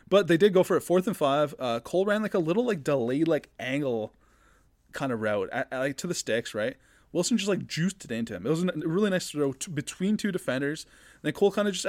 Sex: male